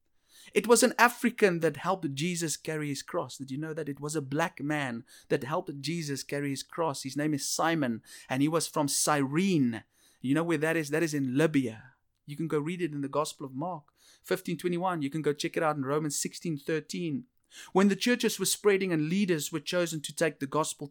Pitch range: 145-195 Hz